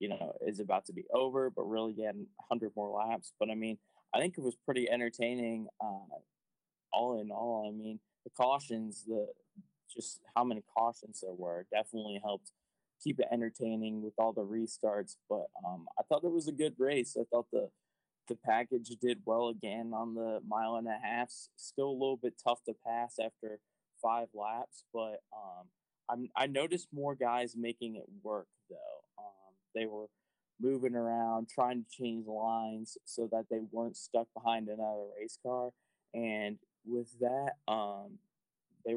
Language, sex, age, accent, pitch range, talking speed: English, male, 20-39, American, 110-125 Hz, 175 wpm